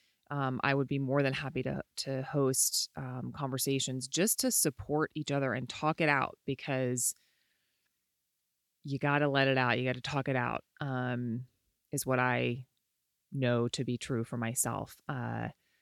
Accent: American